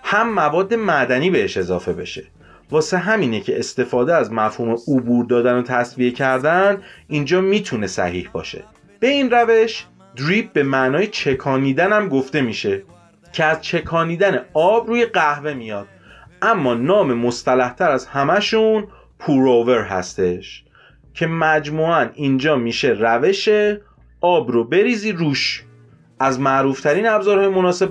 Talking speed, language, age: 125 wpm, Persian, 30-49